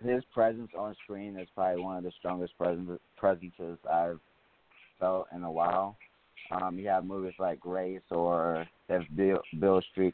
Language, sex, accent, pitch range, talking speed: English, male, American, 85-100 Hz, 165 wpm